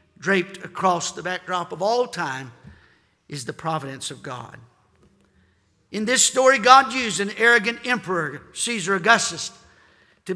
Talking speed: 135 wpm